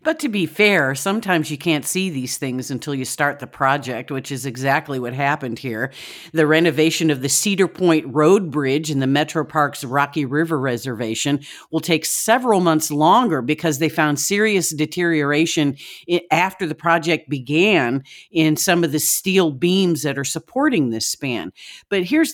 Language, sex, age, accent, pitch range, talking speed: English, female, 50-69, American, 145-180 Hz, 170 wpm